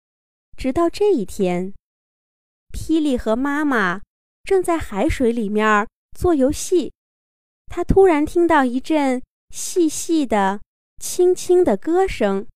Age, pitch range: 20-39, 205-315 Hz